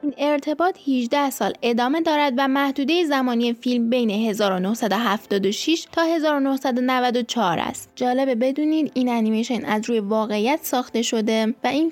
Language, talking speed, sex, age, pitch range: Persian, 125 wpm, female, 10-29, 220-275 Hz